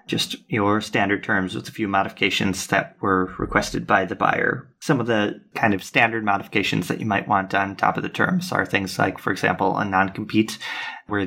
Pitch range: 100-110 Hz